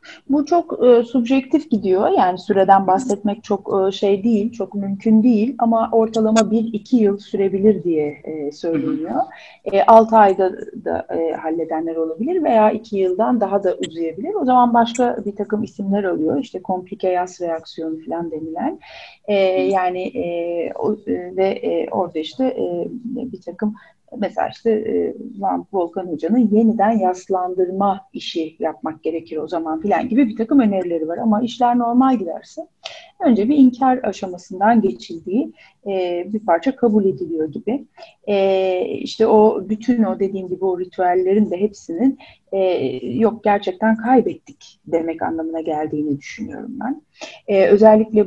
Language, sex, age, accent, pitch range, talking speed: Turkish, female, 40-59, native, 180-225 Hz, 135 wpm